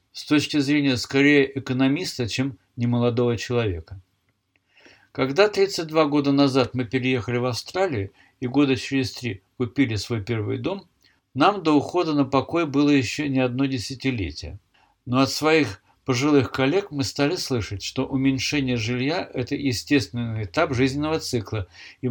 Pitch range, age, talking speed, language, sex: 115-145 Hz, 60-79, 140 wpm, Russian, male